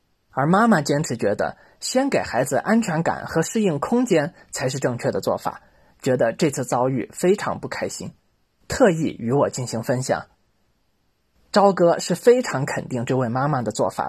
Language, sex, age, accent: Chinese, male, 20-39, native